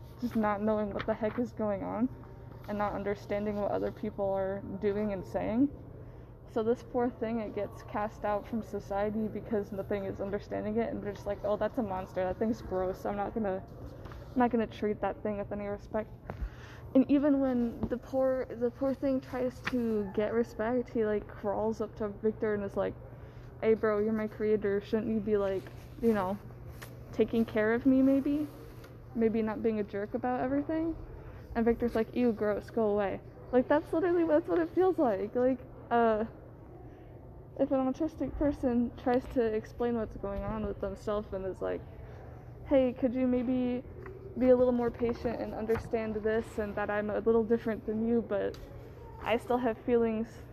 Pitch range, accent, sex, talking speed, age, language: 205-250 Hz, American, female, 190 wpm, 20-39, English